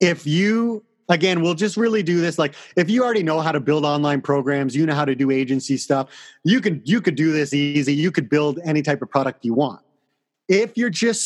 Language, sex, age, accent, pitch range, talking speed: English, male, 30-49, American, 145-190 Hz, 235 wpm